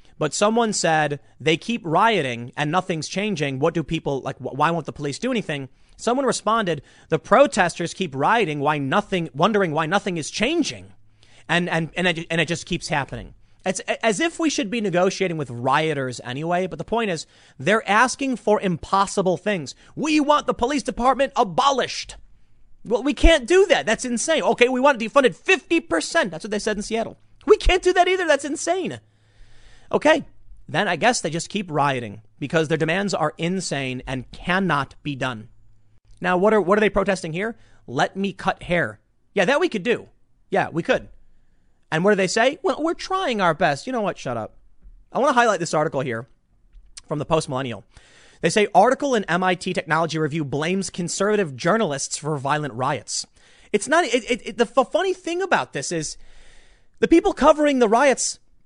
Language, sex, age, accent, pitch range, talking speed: English, male, 30-49, American, 150-235 Hz, 185 wpm